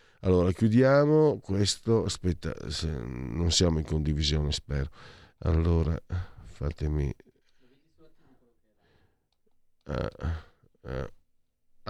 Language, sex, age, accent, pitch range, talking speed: Italian, male, 50-69, native, 85-110 Hz, 60 wpm